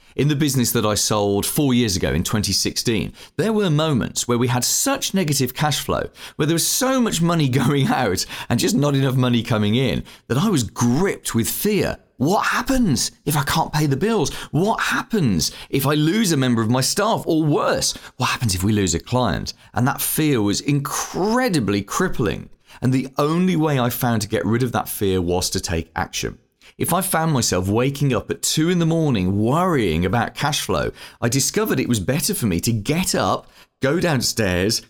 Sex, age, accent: male, 30-49, British